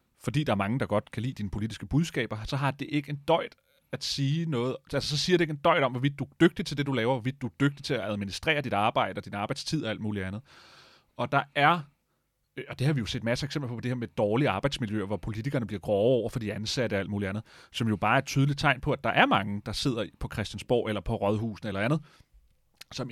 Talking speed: 270 wpm